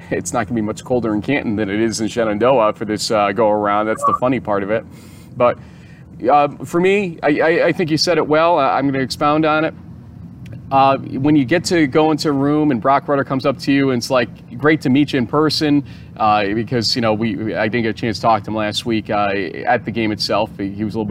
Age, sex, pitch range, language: 30-49, male, 115-145 Hz, English